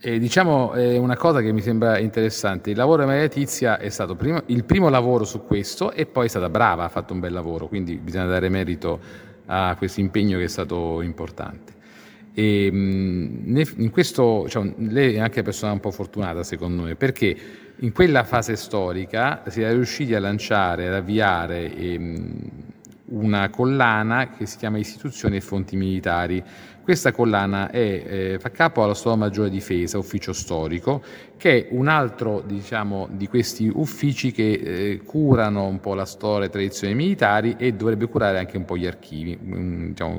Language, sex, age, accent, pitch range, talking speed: Italian, male, 40-59, native, 95-115 Hz, 180 wpm